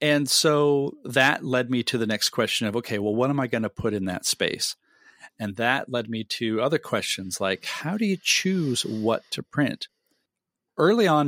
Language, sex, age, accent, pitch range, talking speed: English, male, 40-59, American, 105-135 Hz, 200 wpm